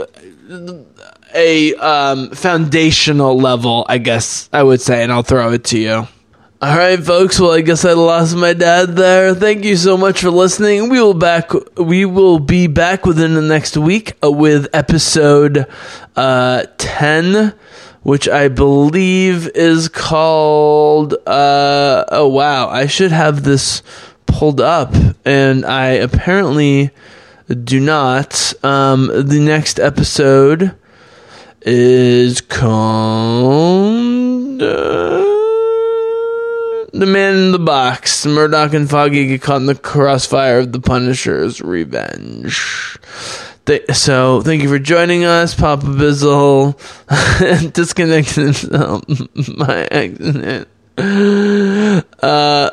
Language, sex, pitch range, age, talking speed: English, male, 135-175 Hz, 20-39, 115 wpm